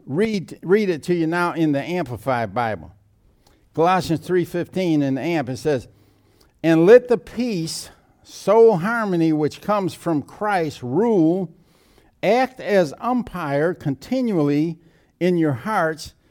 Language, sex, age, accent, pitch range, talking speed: English, male, 60-79, American, 145-195 Hz, 135 wpm